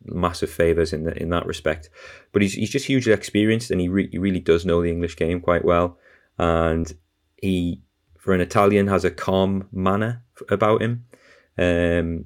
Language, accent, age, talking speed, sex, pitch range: English, British, 30-49, 180 wpm, male, 85-95 Hz